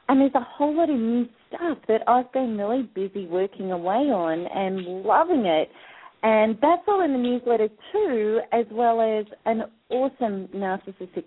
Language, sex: English, female